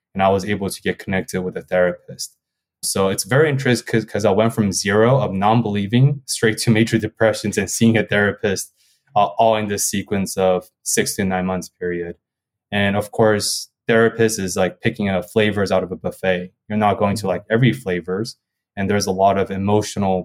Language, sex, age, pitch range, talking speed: English, male, 20-39, 90-110 Hz, 195 wpm